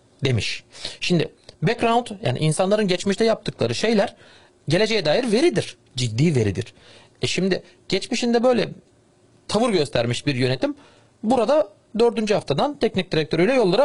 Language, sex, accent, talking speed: Turkish, male, native, 115 wpm